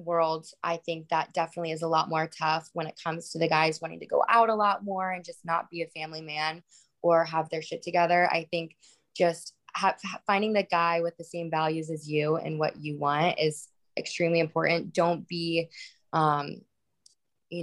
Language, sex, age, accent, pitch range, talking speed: English, female, 20-39, American, 160-180 Hz, 200 wpm